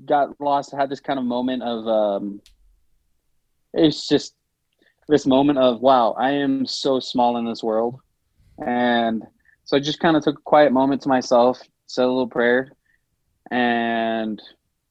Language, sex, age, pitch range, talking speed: English, male, 20-39, 115-130 Hz, 160 wpm